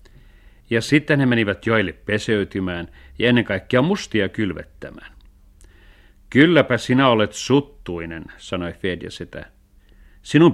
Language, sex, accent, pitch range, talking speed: Finnish, male, native, 90-125 Hz, 110 wpm